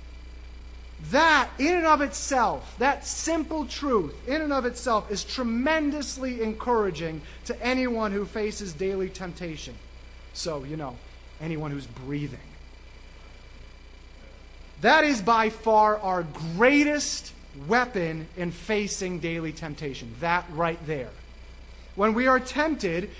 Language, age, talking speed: English, 30-49, 115 wpm